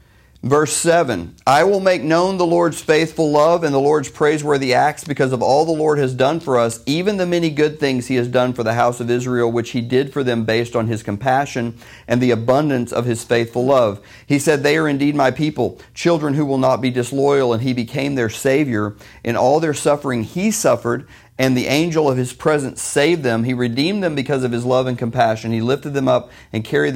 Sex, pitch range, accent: male, 120-145 Hz, American